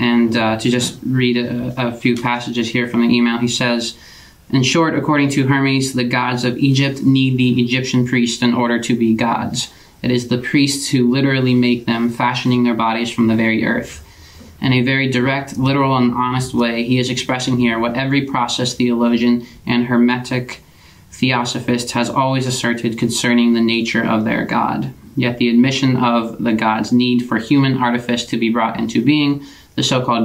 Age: 20-39